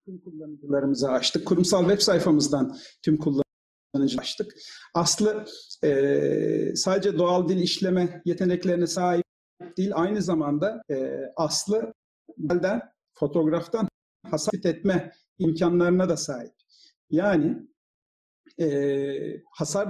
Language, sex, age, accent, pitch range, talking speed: Turkish, male, 50-69, native, 160-200 Hz, 95 wpm